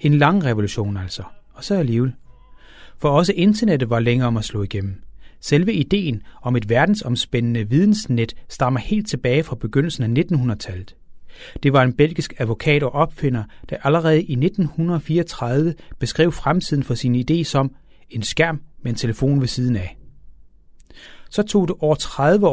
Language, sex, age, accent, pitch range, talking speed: Danish, male, 30-49, native, 115-155 Hz, 155 wpm